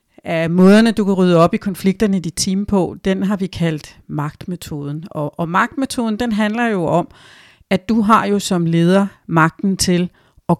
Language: Danish